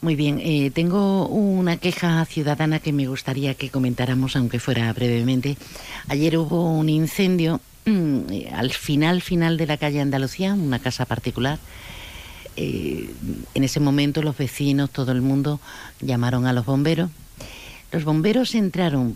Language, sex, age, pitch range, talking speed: Spanish, female, 50-69, 130-175 Hz, 140 wpm